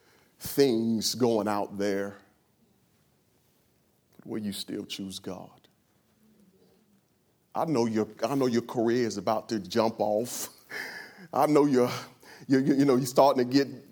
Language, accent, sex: English, American, male